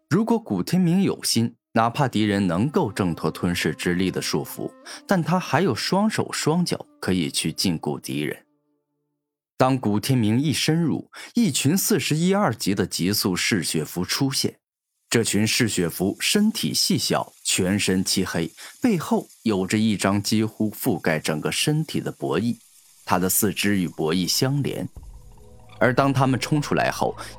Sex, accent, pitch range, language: male, native, 100-150 Hz, Chinese